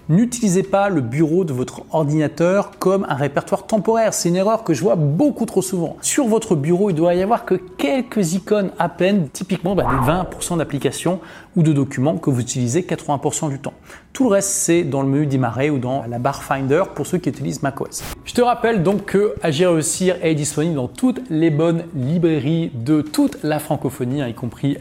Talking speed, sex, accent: 205 wpm, male, French